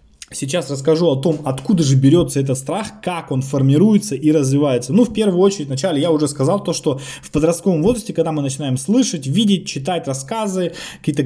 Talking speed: 185 wpm